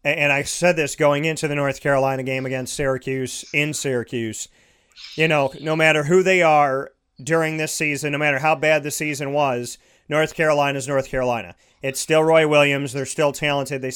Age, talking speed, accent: 40-59, 190 wpm, American